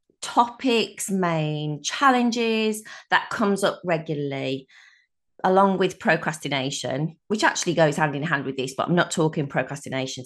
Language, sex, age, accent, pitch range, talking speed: English, female, 30-49, British, 160-235 Hz, 135 wpm